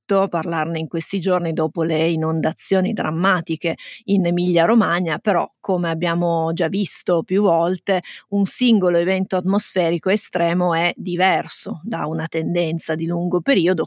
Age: 30-49